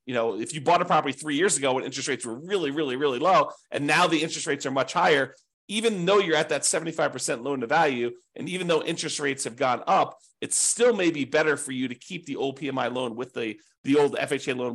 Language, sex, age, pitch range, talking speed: English, male, 30-49, 125-165 Hz, 250 wpm